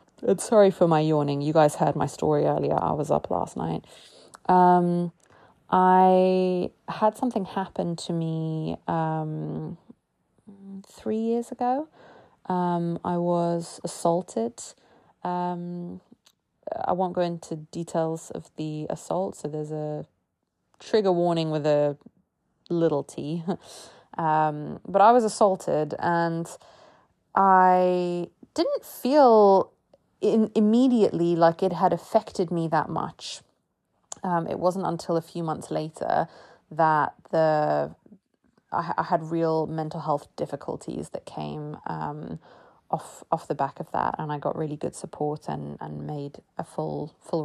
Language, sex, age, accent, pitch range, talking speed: English, female, 20-39, British, 155-190 Hz, 135 wpm